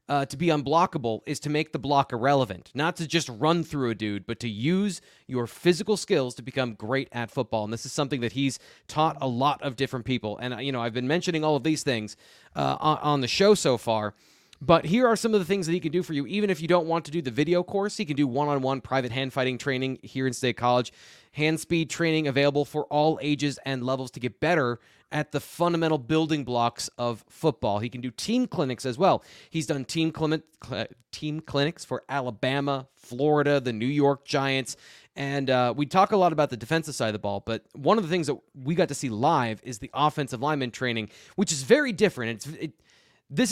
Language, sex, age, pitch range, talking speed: English, male, 30-49, 125-160 Hz, 230 wpm